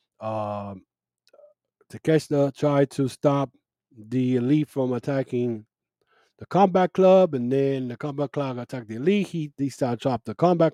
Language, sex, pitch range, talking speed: English, male, 110-140 Hz, 150 wpm